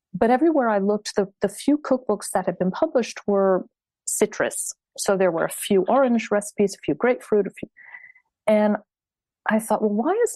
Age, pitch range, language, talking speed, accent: 40-59, 185-215 Hz, English, 185 wpm, American